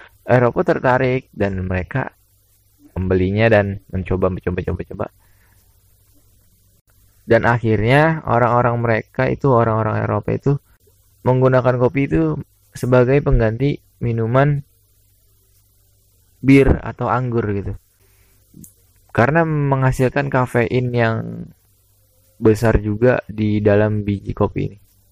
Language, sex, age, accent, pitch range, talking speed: Indonesian, male, 20-39, native, 100-120 Hz, 95 wpm